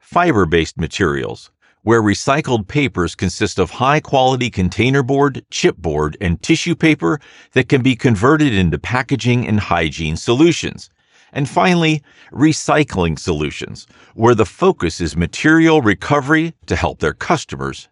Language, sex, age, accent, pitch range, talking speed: English, male, 50-69, American, 90-150 Hz, 125 wpm